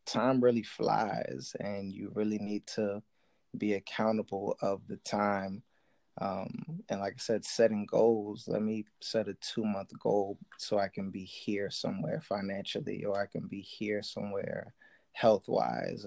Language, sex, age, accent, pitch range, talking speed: English, male, 20-39, American, 100-110 Hz, 150 wpm